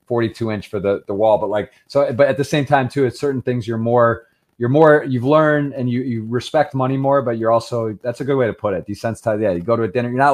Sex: male